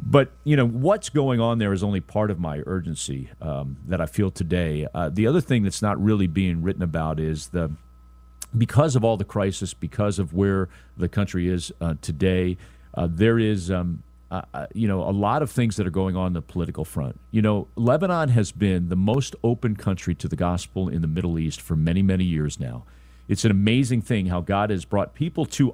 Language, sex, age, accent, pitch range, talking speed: English, male, 40-59, American, 85-115 Hz, 215 wpm